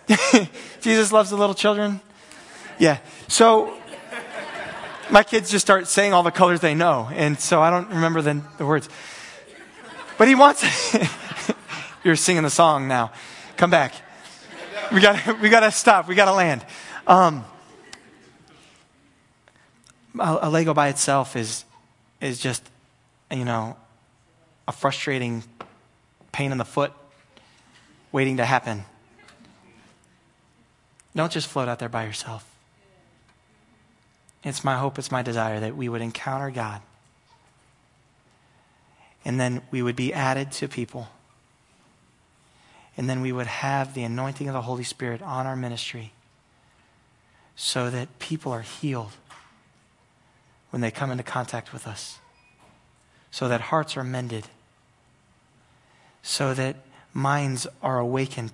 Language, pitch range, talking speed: English, 120-160 Hz, 130 wpm